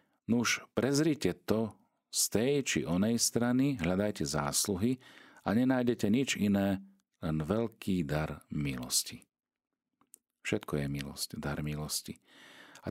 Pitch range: 75-105 Hz